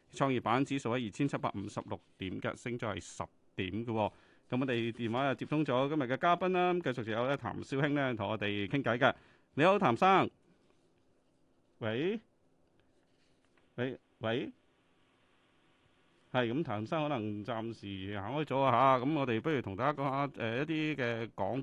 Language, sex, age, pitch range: Chinese, male, 30-49, 110-145 Hz